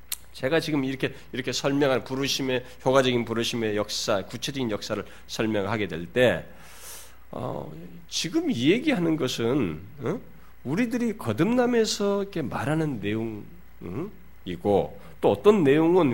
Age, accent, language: 40-59, native, Korean